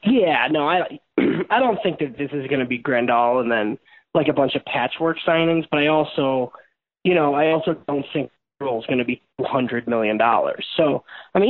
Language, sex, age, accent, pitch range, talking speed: English, male, 20-39, American, 135-160 Hz, 215 wpm